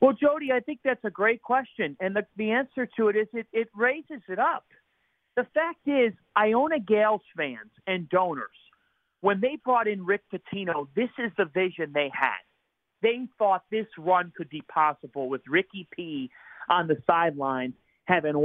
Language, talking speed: English, 175 wpm